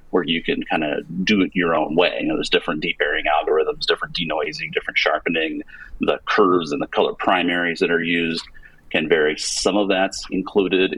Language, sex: English, male